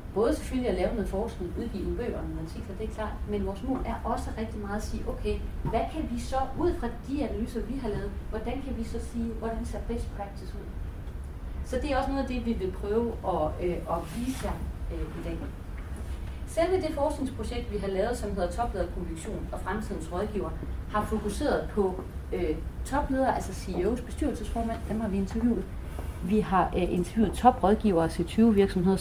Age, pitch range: 30-49, 180-245 Hz